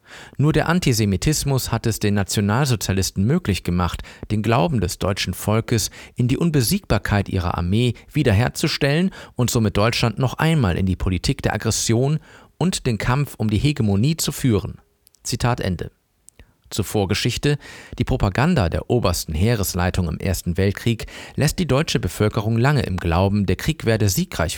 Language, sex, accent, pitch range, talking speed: German, male, German, 95-125 Hz, 150 wpm